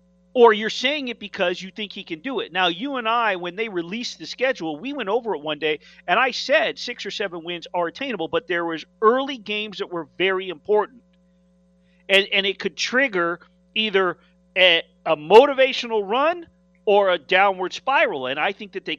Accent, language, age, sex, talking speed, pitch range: American, English, 40-59, male, 200 wpm, 180-240 Hz